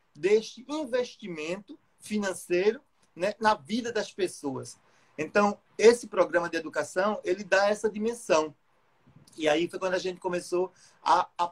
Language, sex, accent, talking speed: Portuguese, male, Brazilian, 135 wpm